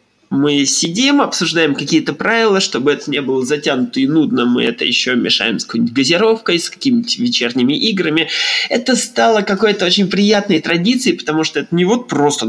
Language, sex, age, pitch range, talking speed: Russian, male, 20-39, 150-240 Hz, 170 wpm